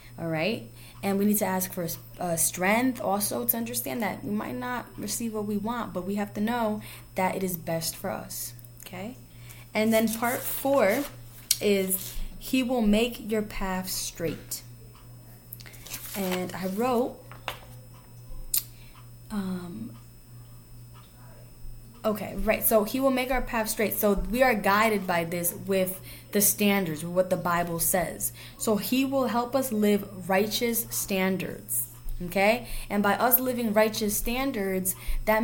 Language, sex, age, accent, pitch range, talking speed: English, female, 10-29, American, 165-225 Hz, 150 wpm